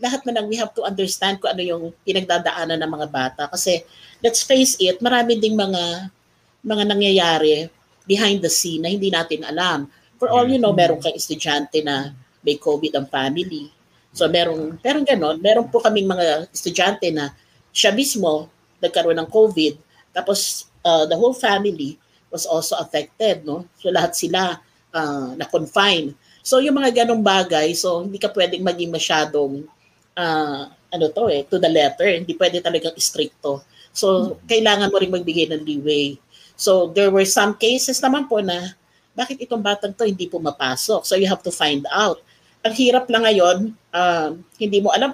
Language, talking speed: Filipino, 170 wpm